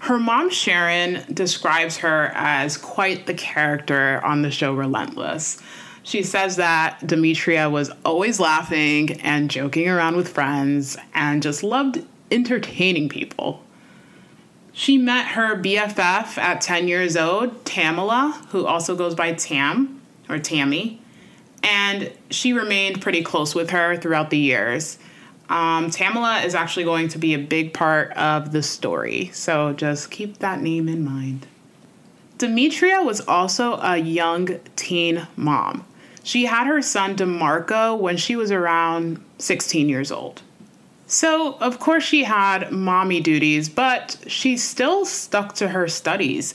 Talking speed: 140 wpm